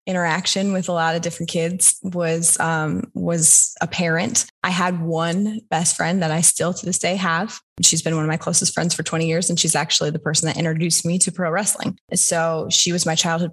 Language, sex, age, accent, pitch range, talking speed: English, female, 20-39, American, 160-180 Hz, 215 wpm